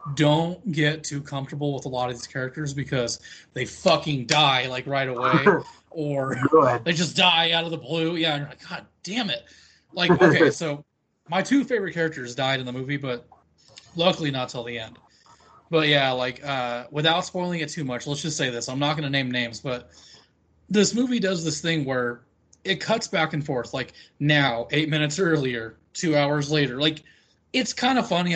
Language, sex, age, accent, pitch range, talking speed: English, male, 20-39, American, 125-165 Hz, 195 wpm